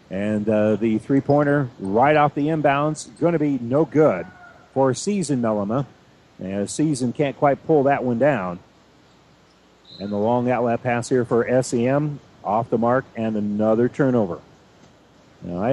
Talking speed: 165 wpm